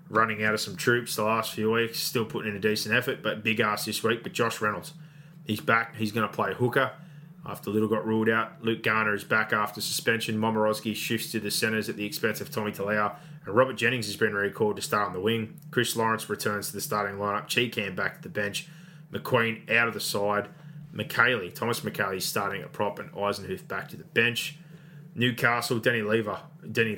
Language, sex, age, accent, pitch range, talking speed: English, male, 20-39, Australian, 105-145 Hz, 210 wpm